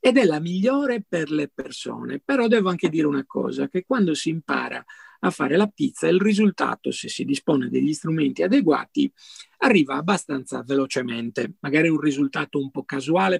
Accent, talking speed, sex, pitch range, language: native, 170 wpm, male, 145-180 Hz, Italian